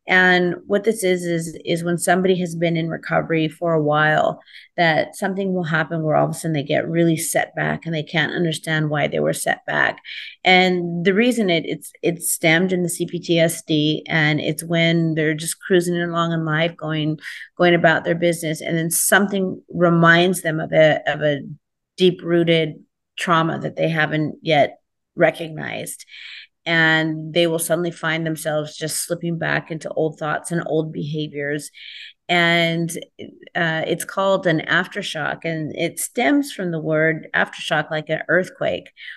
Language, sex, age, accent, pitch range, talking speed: English, female, 30-49, American, 155-175 Hz, 170 wpm